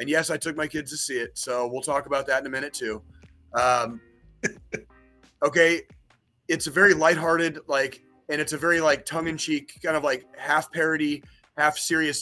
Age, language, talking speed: 30-49, English, 195 wpm